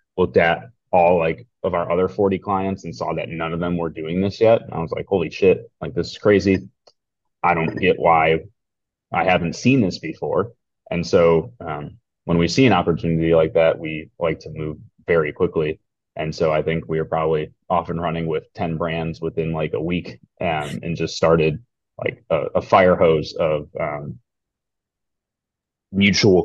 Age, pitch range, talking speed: 30-49, 80-95 Hz, 190 wpm